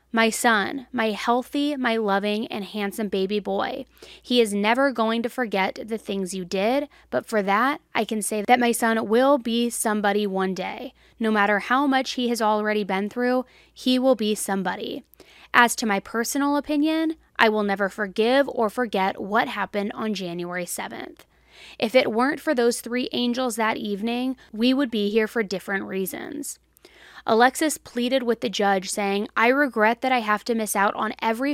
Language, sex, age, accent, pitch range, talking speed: English, female, 20-39, American, 205-260 Hz, 180 wpm